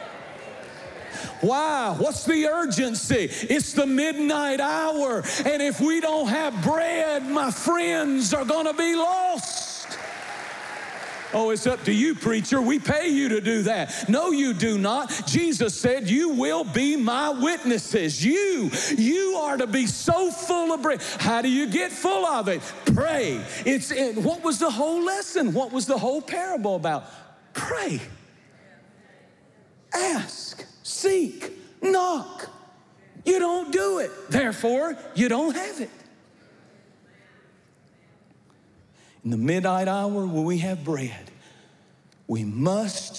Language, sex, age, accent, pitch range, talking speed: English, male, 50-69, American, 200-305 Hz, 135 wpm